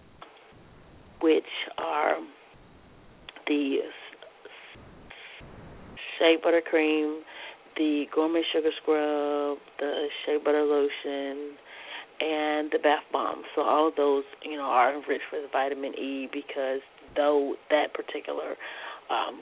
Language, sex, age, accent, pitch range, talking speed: English, female, 30-49, American, 145-160 Hz, 105 wpm